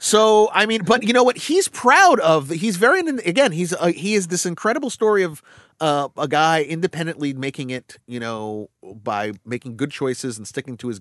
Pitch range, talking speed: 120-180 Hz, 200 wpm